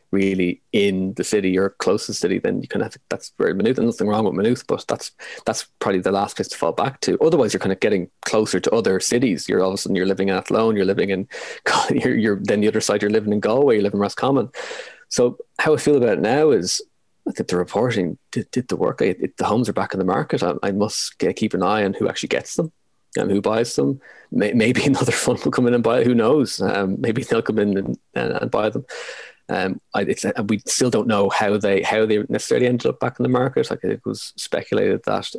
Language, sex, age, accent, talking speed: English, male, 20-39, Irish, 255 wpm